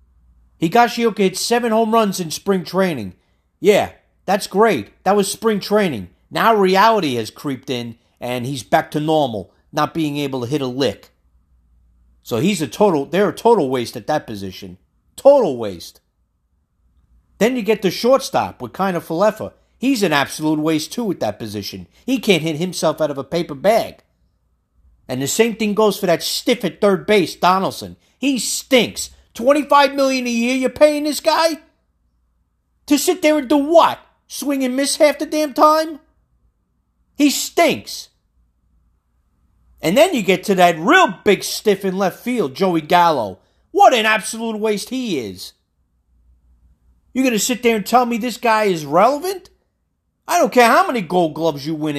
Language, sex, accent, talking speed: English, male, American, 175 wpm